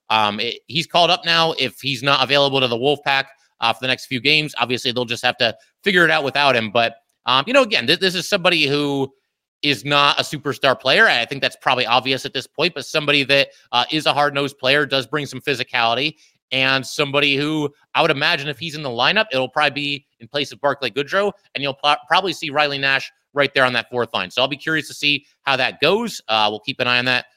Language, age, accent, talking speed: English, 30-49, American, 250 wpm